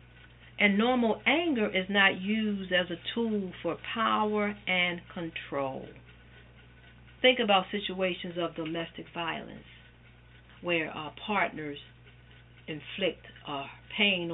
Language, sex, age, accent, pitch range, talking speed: English, female, 50-69, American, 135-190 Hz, 105 wpm